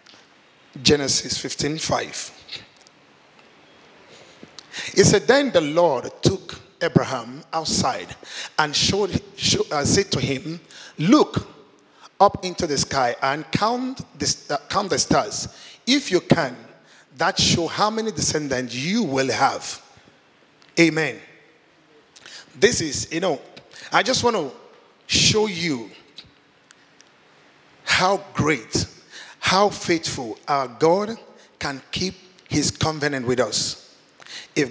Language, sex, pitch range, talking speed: English, male, 135-185 Hz, 110 wpm